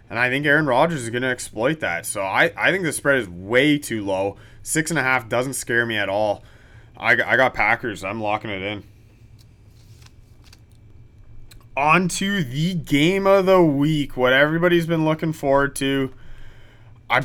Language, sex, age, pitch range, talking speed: English, male, 20-39, 115-165 Hz, 175 wpm